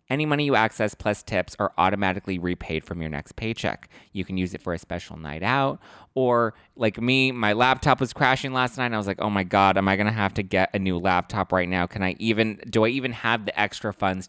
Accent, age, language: American, 20-39, English